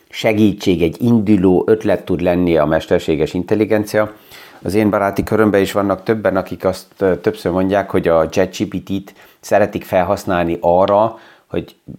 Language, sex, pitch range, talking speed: Hungarian, male, 95-110 Hz, 140 wpm